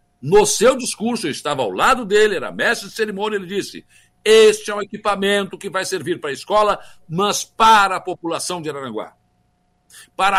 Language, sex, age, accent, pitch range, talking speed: Portuguese, male, 60-79, Brazilian, 155-235 Hz, 180 wpm